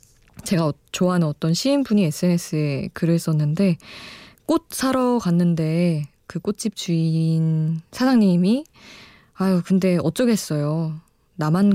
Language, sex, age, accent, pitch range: Korean, female, 20-39, native, 150-200 Hz